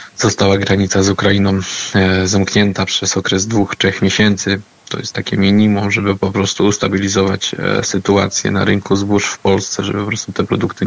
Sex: male